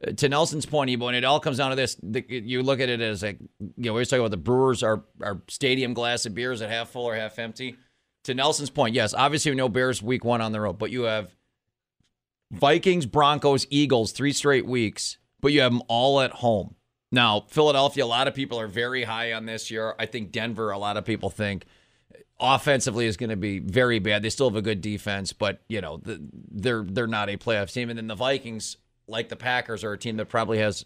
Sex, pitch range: male, 110-145 Hz